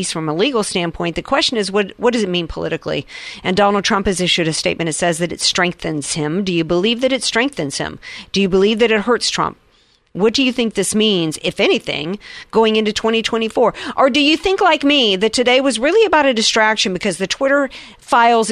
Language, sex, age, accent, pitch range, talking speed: English, female, 50-69, American, 170-240 Hz, 220 wpm